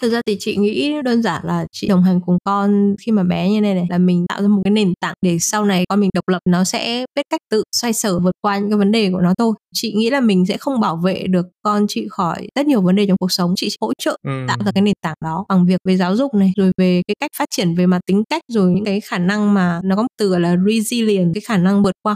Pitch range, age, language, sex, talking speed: 185-215 Hz, 20-39, Vietnamese, female, 300 wpm